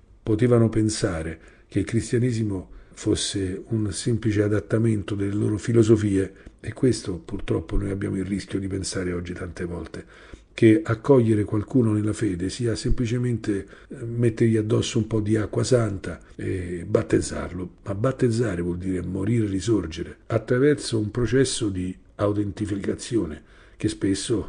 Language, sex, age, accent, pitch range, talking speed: Italian, male, 50-69, native, 95-115 Hz, 130 wpm